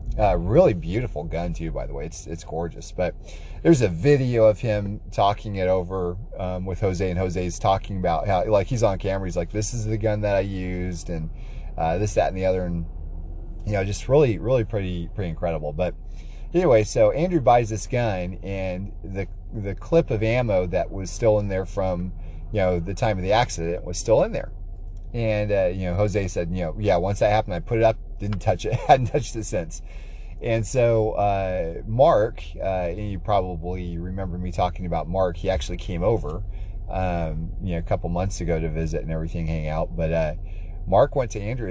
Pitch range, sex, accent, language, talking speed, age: 85-110 Hz, male, American, English, 210 wpm, 30-49